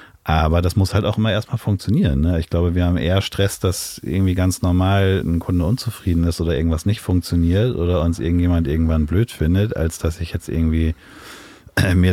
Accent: German